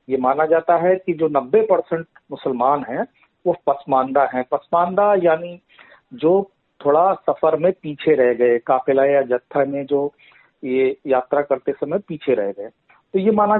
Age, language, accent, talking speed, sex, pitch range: 50-69, Hindi, native, 165 wpm, male, 145-195 Hz